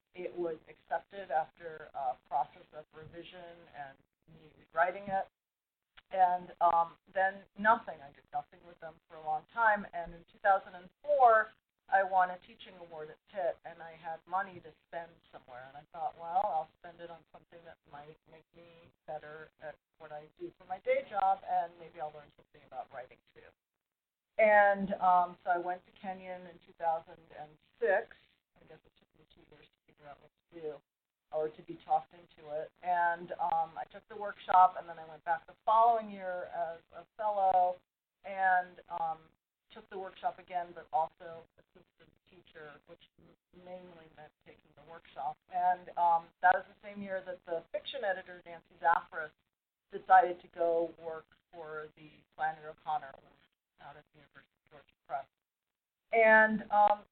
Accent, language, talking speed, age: American, English, 165 wpm, 40-59